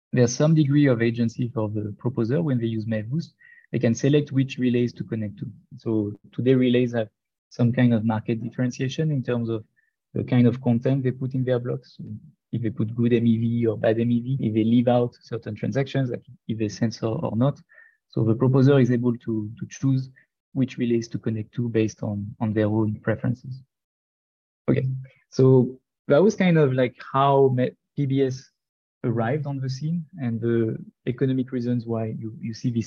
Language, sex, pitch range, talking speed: English, male, 115-135 Hz, 190 wpm